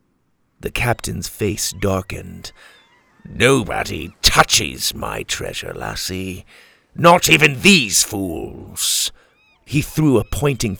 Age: 50-69